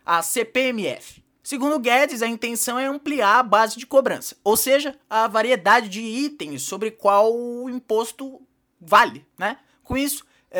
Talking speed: 145 wpm